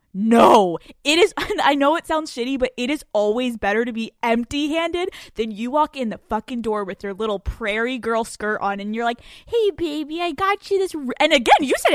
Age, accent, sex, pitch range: 10-29, American, female, 205-285 Hz